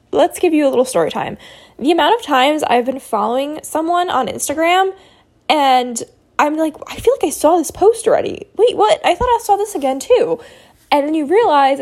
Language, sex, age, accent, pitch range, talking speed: English, female, 10-29, American, 260-345 Hz, 210 wpm